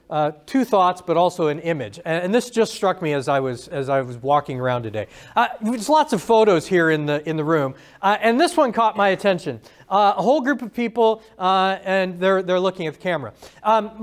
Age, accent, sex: 40-59, American, male